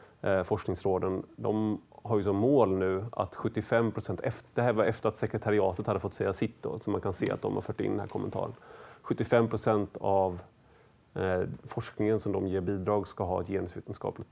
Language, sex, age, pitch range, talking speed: Swedish, male, 30-49, 95-115 Hz, 190 wpm